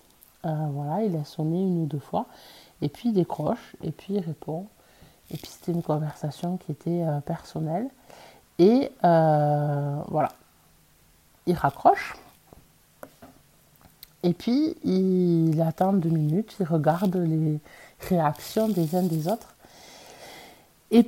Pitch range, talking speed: 155-205 Hz, 135 wpm